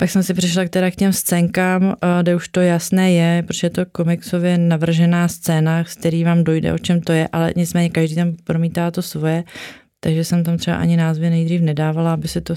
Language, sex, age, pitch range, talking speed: Czech, female, 30-49, 170-185 Hz, 220 wpm